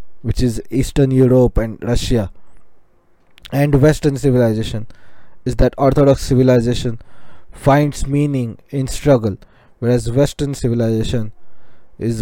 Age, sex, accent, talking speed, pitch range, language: 20-39, male, Indian, 105 wpm, 110-140 Hz, English